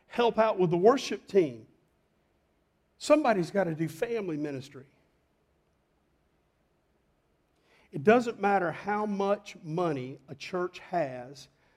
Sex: male